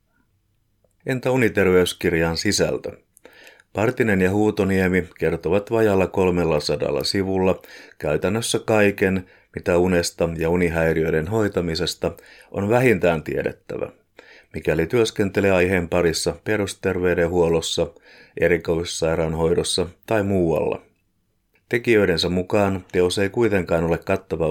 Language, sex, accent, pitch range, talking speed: Finnish, male, native, 85-100 Hz, 90 wpm